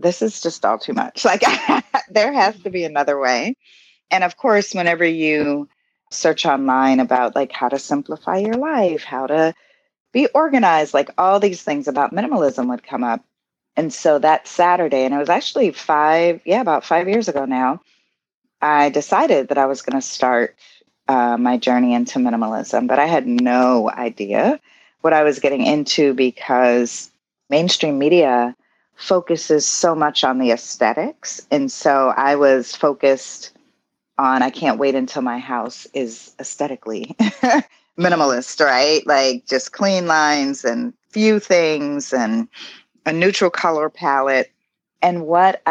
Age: 30-49